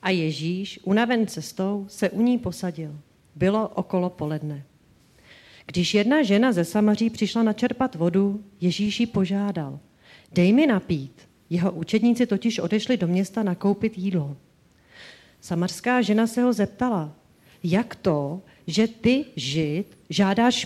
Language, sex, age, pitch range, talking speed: Czech, female, 40-59, 180-235 Hz, 130 wpm